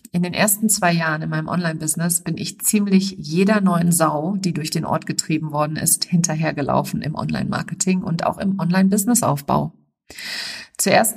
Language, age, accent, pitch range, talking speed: German, 50-69, German, 160-205 Hz, 155 wpm